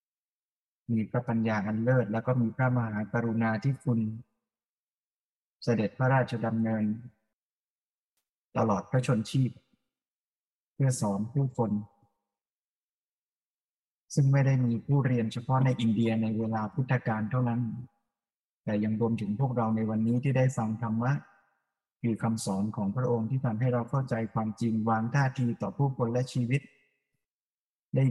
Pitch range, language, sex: 110-130 Hz, Thai, male